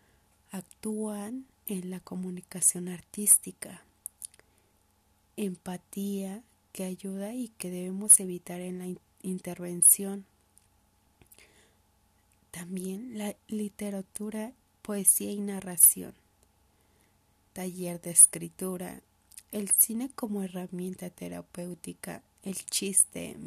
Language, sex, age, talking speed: Spanish, female, 30-49, 85 wpm